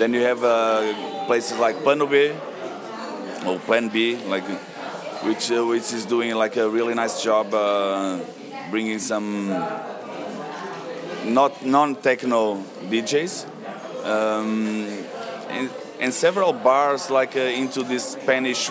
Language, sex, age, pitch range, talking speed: English, male, 30-49, 110-130 Hz, 125 wpm